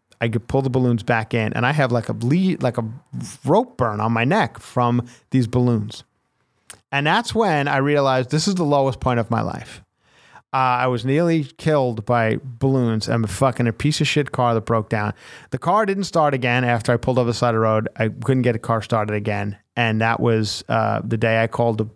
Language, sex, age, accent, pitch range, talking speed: English, male, 30-49, American, 115-185 Hz, 225 wpm